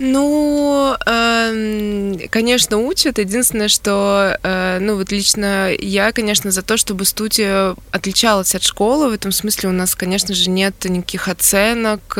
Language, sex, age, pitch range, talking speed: Russian, female, 20-39, 185-220 Hz, 135 wpm